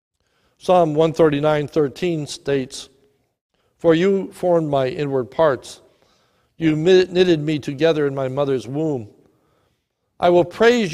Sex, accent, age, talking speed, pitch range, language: male, American, 60-79, 115 wpm, 135-175 Hz, English